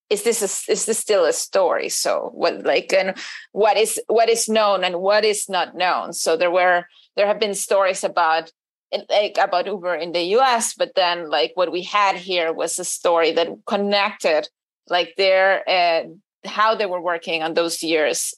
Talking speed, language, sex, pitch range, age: 190 wpm, English, female, 175-205 Hz, 30-49